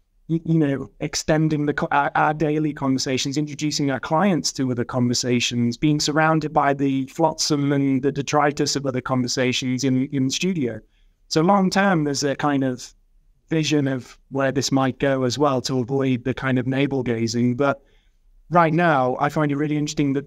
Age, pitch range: 30-49, 130-150 Hz